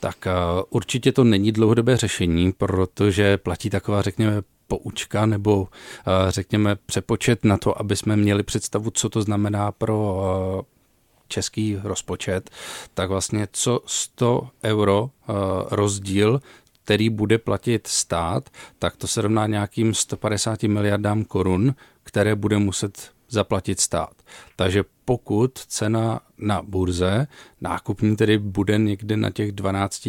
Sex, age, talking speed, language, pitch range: male, 40-59, 120 wpm, Czech, 100-110 Hz